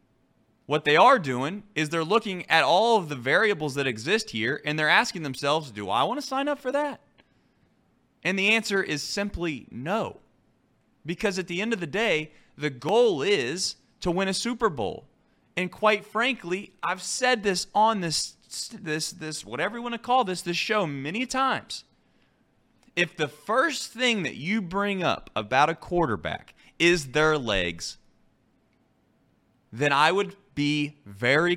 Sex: male